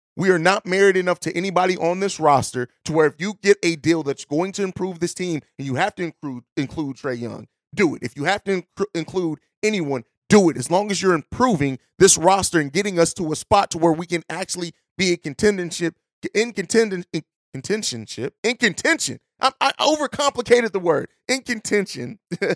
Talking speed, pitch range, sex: 200 wpm, 155-195 Hz, male